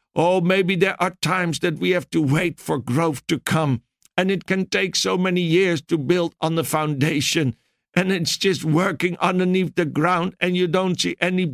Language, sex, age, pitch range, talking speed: English, male, 60-79, 155-185 Hz, 200 wpm